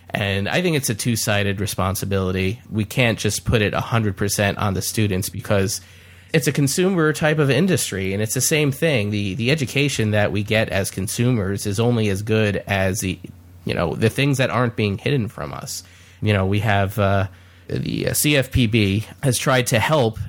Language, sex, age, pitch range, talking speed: English, male, 20-39, 100-120 Hz, 205 wpm